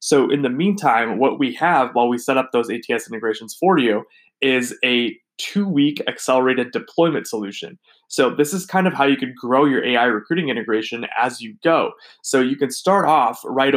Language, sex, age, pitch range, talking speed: English, male, 20-39, 115-145 Hz, 190 wpm